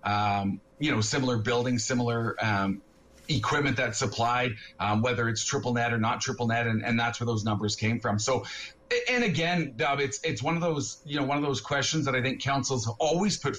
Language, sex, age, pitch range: English, male, 30-49, 115-140 Hz